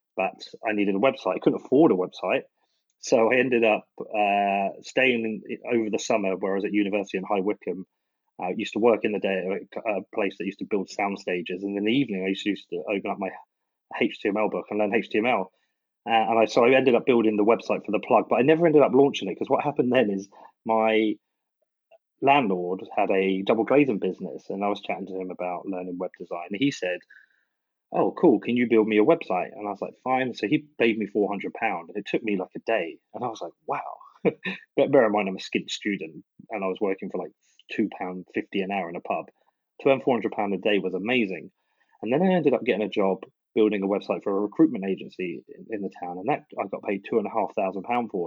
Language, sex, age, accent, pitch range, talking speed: English, male, 30-49, British, 95-115 Hz, 245 wpm